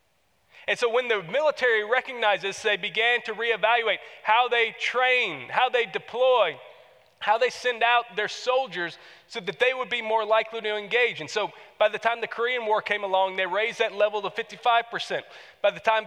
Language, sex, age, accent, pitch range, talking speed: English, male, 30-49, American, 190-245 Hz, 190 wpm